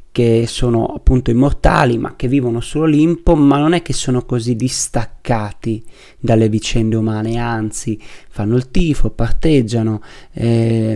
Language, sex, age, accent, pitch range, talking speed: Italian, male, 20-39, native, 115-135 Hz, 130 wpm